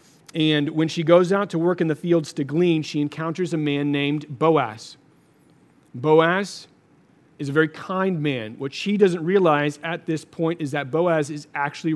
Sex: male